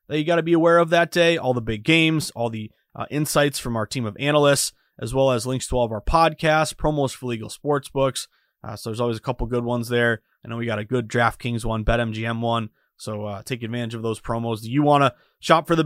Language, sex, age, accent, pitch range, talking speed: English, male, 20-39, American, 115-150 Hz, 260 wpm